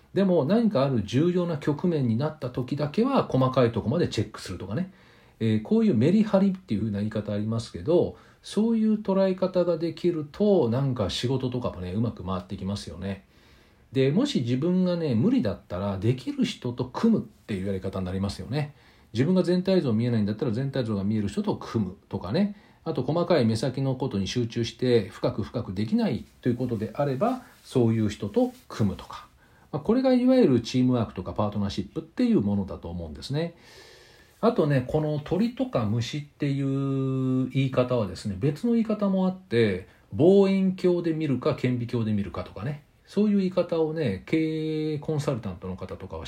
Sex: male